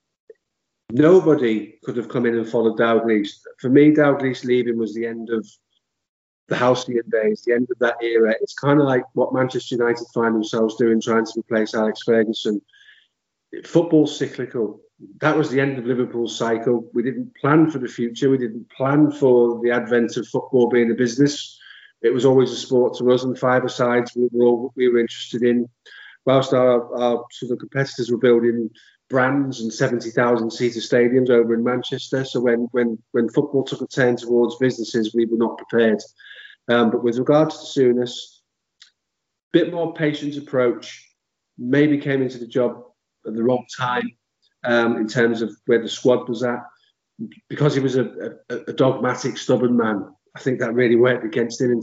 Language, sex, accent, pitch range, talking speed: English, male, British, 115-135 Hz, 180 wpm